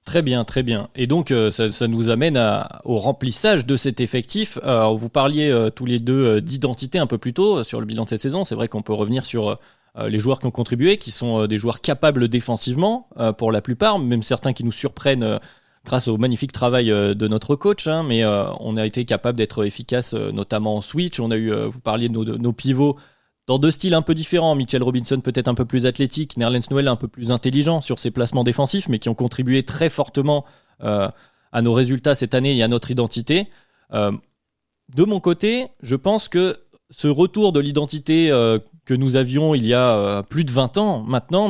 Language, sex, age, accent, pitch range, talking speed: French, male, 20-39, French, 115-150 Hz, 225 wpm